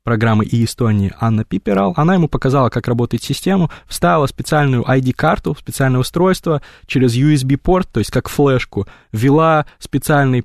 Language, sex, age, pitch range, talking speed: Russian, male, 20-39, 105-140 Hz, 140 wpm